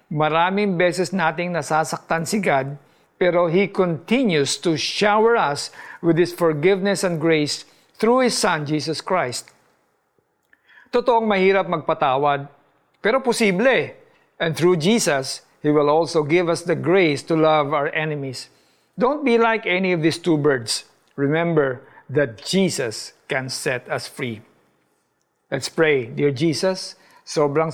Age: 50-69